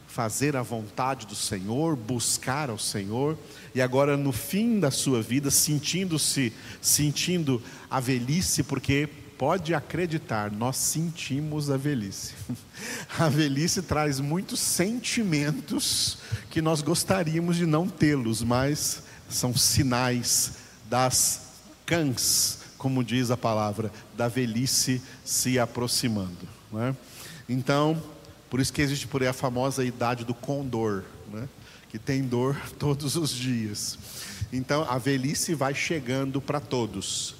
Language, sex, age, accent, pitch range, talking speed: Portuguese, male, 50-69, Brazilian, 120-155 Hz, 125 wpm